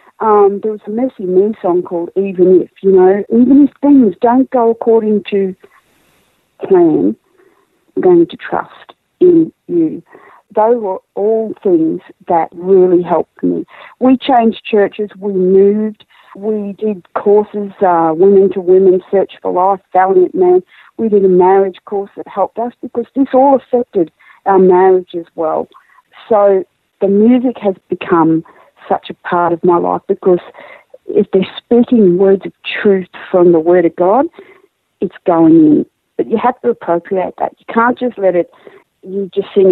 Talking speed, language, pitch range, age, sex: 160 wpm, English, 185-265 Hz, 50-69, female